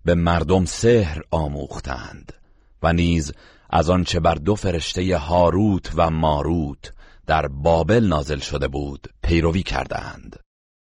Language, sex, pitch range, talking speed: Persian, male, 75-90 Hz, 115 wpm